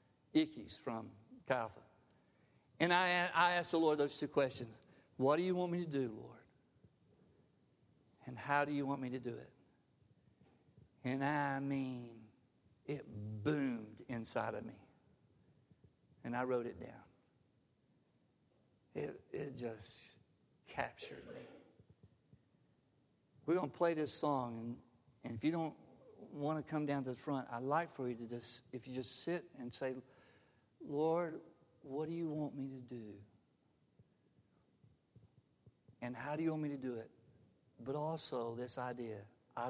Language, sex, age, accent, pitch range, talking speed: English, male, 60-79, American, 120-155 Hz, 150 wpm